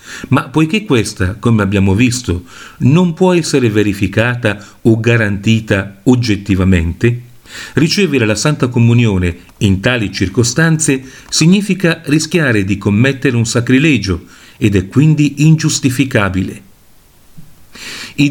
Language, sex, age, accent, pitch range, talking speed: Italian, male, 40-59, native, 100-150 Hz, 100 wpm